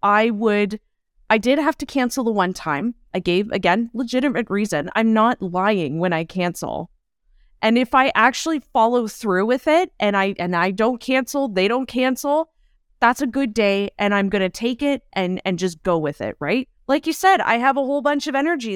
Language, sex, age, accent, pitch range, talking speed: English, female, 20-39, American, 190-255 Hz, 205 wpm